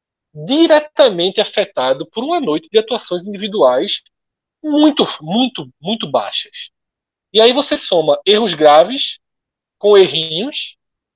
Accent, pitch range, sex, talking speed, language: Brazilian, 185-255 Hz, male, 110 wpm, Portuguese